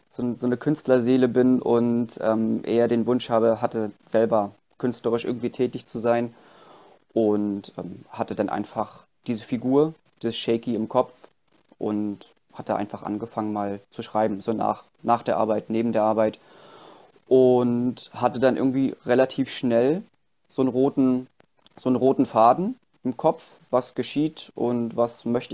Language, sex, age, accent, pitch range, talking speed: German, male, 30-49, German, 110-125 Hz, 150 wpm